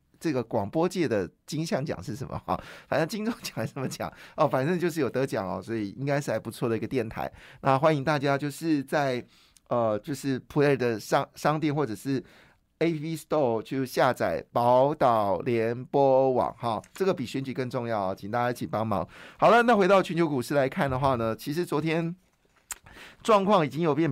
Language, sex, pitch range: Chinese, male, 115-145 Hz